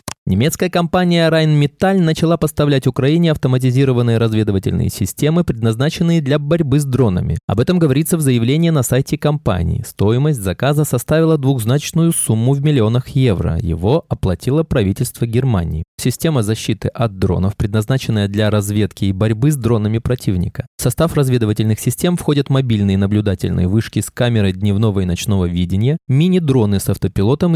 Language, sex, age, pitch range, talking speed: Russian, male, 20-39, 105-150 Hz, 135 wpm